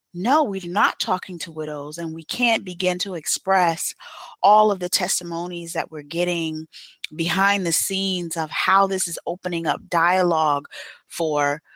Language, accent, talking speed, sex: English, American, 155 wpm, female